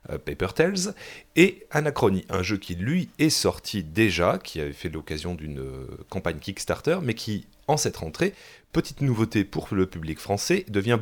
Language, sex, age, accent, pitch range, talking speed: French, male, 30-49, French, 85-130 Hz, 165 wpm